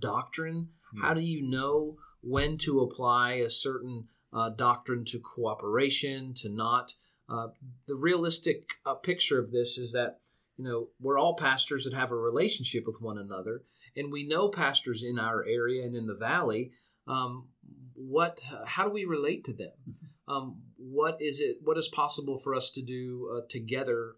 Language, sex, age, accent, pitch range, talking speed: English, male, 40-59, American, 115-140 Hz, 175 wpm